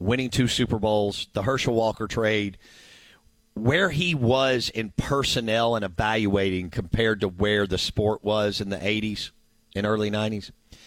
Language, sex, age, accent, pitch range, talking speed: English, male, 50-69, American, 105-120 Hz, 150 wpm